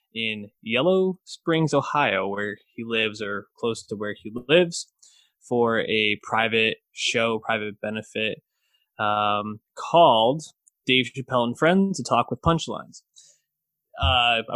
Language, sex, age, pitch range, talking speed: English, male, 20-39, 110-145 Hz, 125 wpm